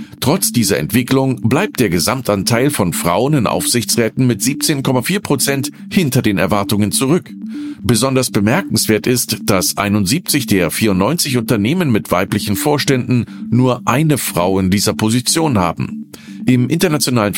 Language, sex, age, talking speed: German, male, 50-69, 125 wpm